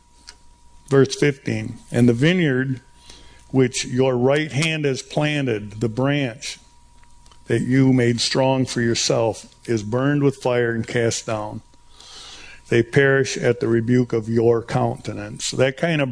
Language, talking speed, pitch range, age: English, 140 wpm, 115-140 Hz, 50-69